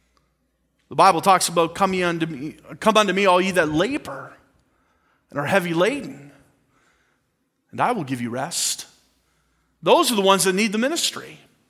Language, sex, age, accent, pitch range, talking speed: English, male, 40-59, American, 200-265 Hz, 155 wpm